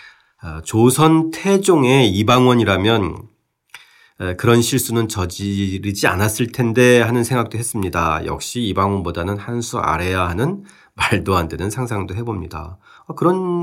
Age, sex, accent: 40-59, male, native